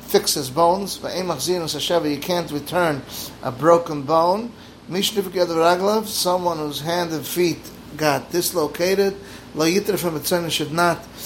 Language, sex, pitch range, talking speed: English, male, 145-185 Hz, 95 wpm